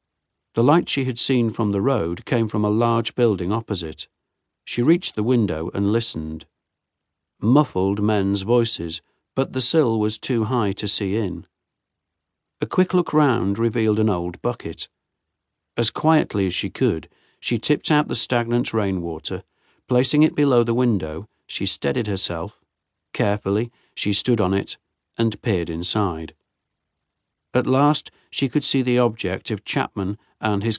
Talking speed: 150 wpm